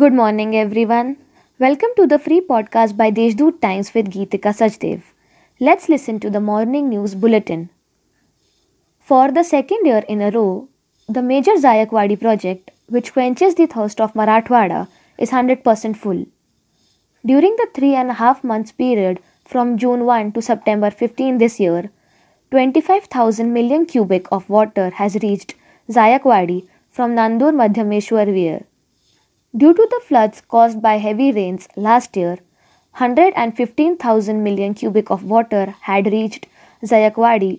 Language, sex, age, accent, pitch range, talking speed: Marathi, female, 20-39, native, 210-255 Hz, 135 wpm